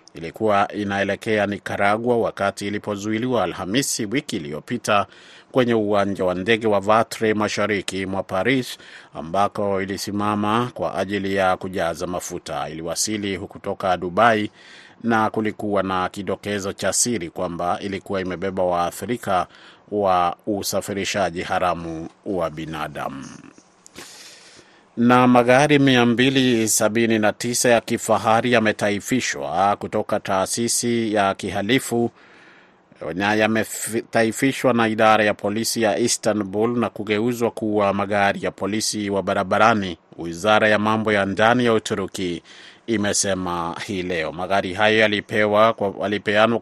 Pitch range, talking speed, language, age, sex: 95-115 Hz, 110 wpm, Swahili, 30-49, male